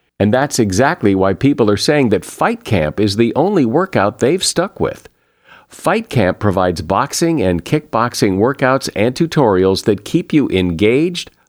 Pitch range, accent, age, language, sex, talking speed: 105-145 Hz, American, 50-69, English, male, 155 wpm